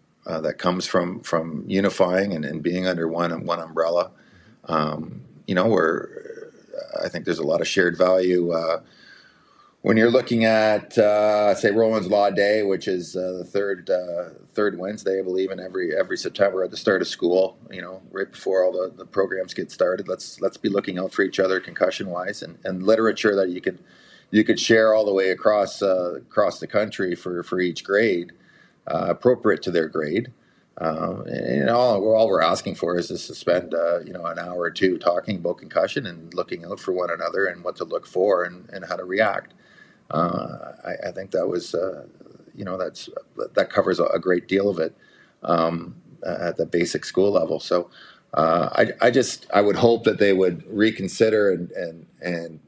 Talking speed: 200 wpm